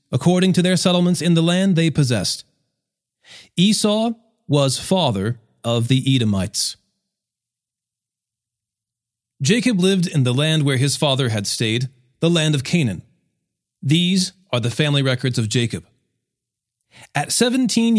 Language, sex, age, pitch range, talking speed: English, male, 40-59, 125-175 Hz, 125 wpm